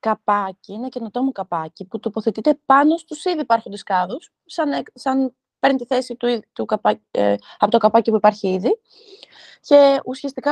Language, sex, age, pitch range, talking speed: Greek, female, 20-39, 215-295 Hz, 170 wpm